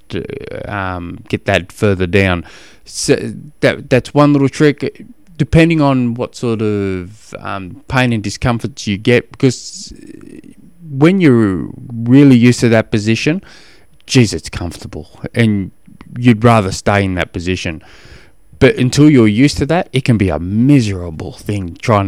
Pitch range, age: 105-135 Hz, 20-39